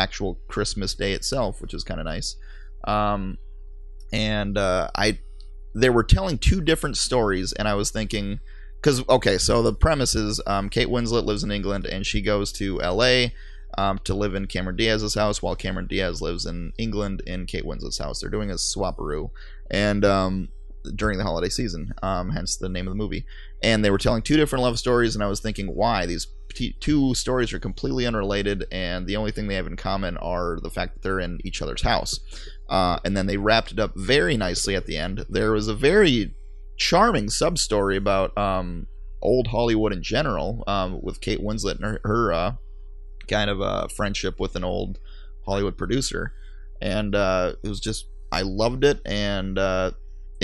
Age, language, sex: 20-39, English, male